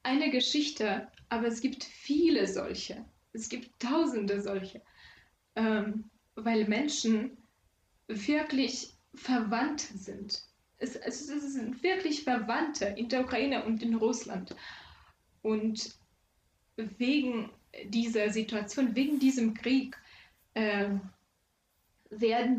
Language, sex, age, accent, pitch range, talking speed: German, female, 10-29, German, 210-250 Hz, 100 wpm